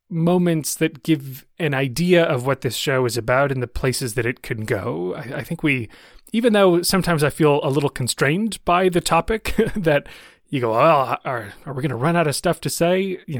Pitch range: 130-175 Hz